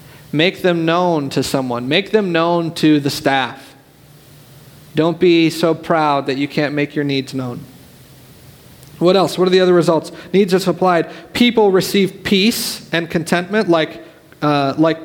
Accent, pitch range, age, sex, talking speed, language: American, 145-190 Hz, 40-59, male, 160 wpm, English